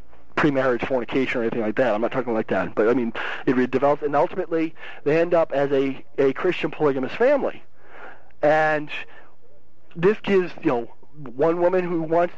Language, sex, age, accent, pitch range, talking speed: English, male, 40-59, American, 150-180 Hz, 175 wpm